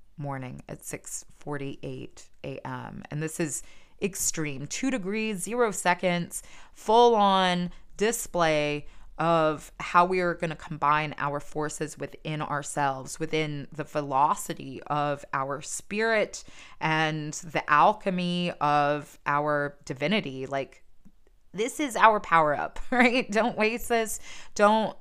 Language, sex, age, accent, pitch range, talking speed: English, female, 20-39, American, 155-190 Hz, 120 wpm